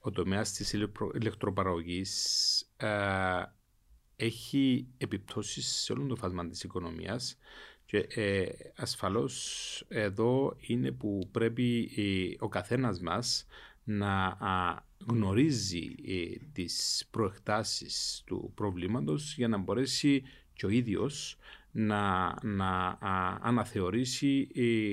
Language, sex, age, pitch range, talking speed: Greek, male, 40-59, 95-115 Hz, 85 wpm